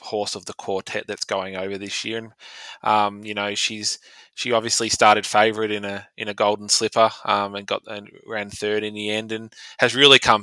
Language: English